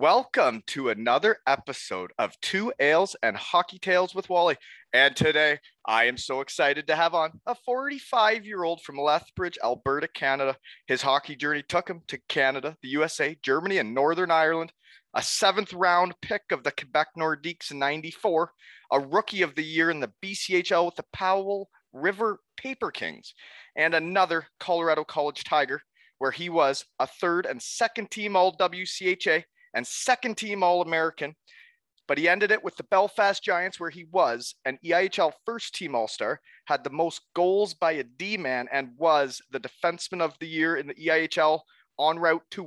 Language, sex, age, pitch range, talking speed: English, male, 30-49, 150-195 Hz, 160 wpm